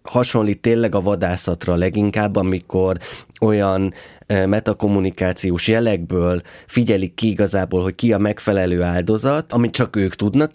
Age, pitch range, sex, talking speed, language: 20-39, 95-110 Hz, male, 120 wpm, Hungarian